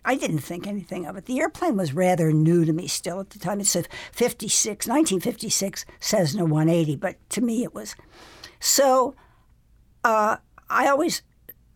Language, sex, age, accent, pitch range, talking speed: English, female, 60-79, American, 180-230 Hz, 160 wpm